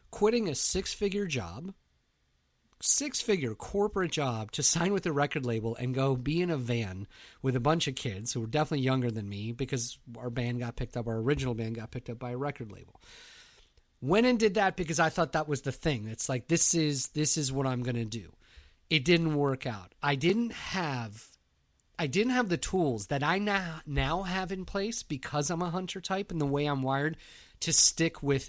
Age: 40-59